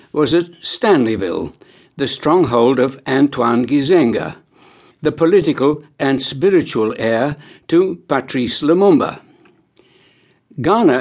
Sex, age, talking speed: male, 60-79, 95 wpm